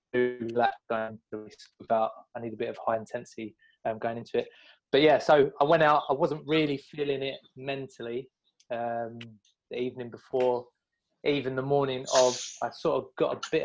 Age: 20-39